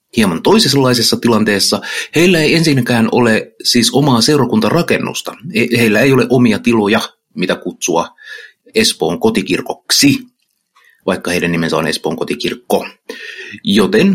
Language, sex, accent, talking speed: Finnish, male, native, 110 wpm